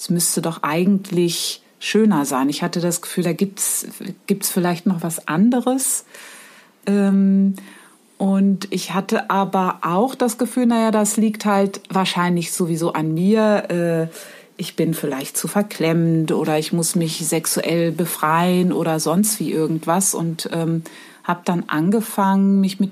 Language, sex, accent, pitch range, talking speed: German, female, German, 170-210 Hz, 150 wpm